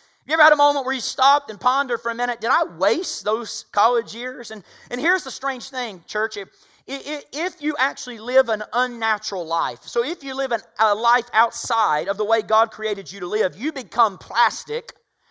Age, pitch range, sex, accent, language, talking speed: 40-59, 210-275 Hz, male, American, English, 205 wpm